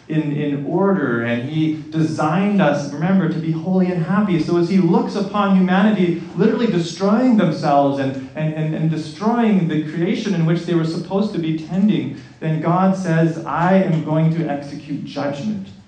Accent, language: American, English